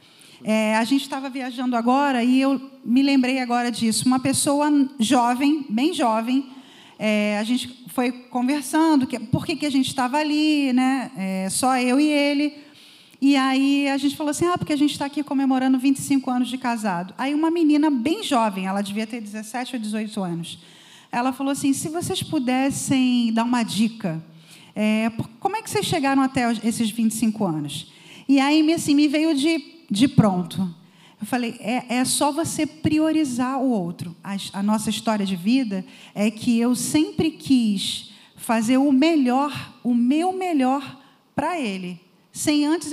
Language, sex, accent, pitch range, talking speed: Portuguese, female, Brazilian, 220-280 Hz, 170 wpm